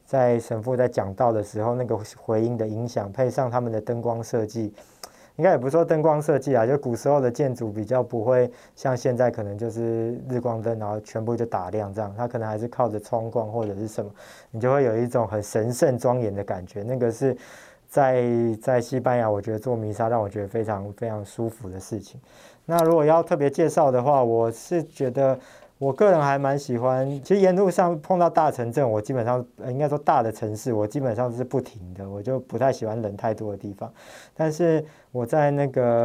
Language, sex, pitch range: Chinese, male, 115-140 Hz